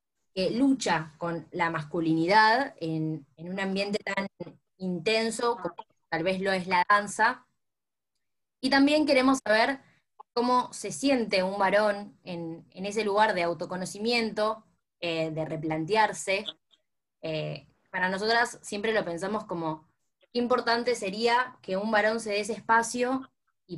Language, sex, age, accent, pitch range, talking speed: Spanish, female, 10-29, Argentinian, 175-235 Hz, 135 wpm